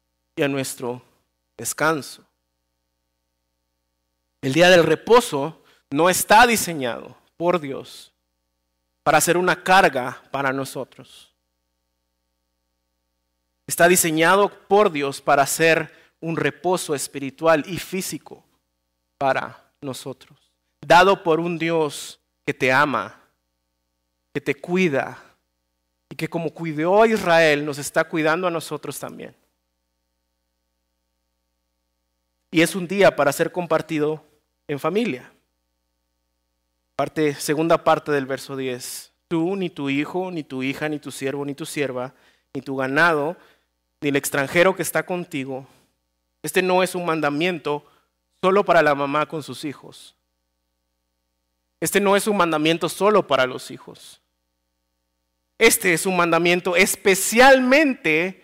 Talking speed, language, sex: 120 wpm, Spanish, male